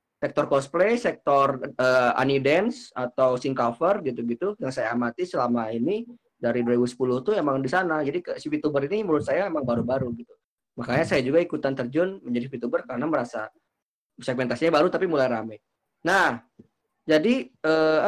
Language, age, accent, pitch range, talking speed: Indonesian, 20-39, native, 135-185 Hz, 155 wpm